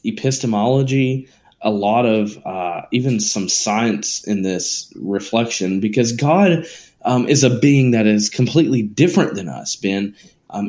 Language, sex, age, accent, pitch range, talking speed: English, male, 20-39, American, 110-145 Hz, 140 wpm